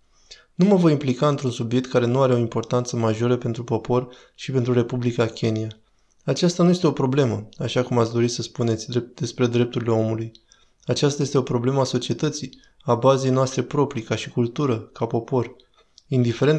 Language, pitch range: Romanian, 120-145 Hz